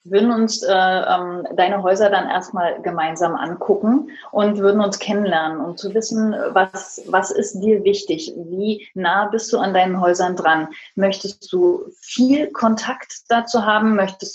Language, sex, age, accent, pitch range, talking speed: German, female, 30-49, German, 185-225 Hz, 160 wpm